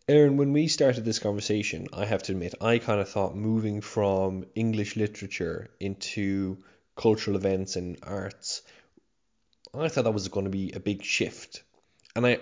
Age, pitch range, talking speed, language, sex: 20-39, 100-120 Hz, 170 wpm, English, male